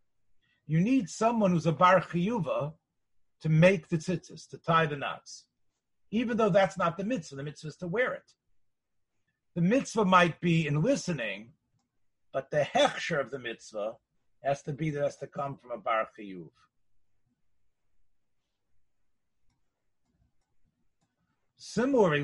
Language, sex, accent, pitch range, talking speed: English, male, American, 135-195 Hz, 140 wpm